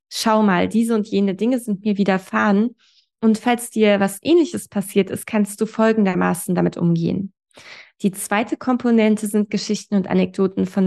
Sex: female